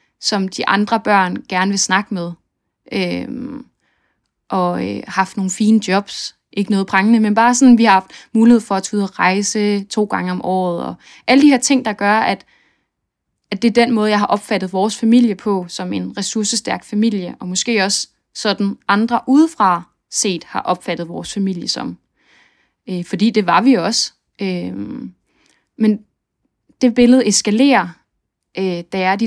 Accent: native